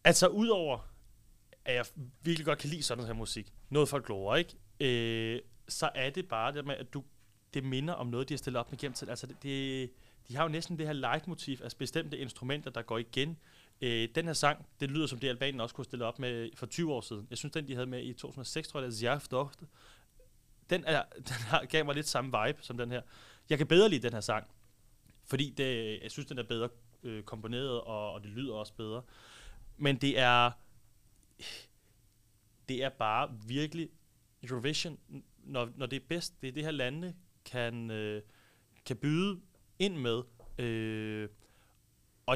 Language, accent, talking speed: Danish, native, 195 wpm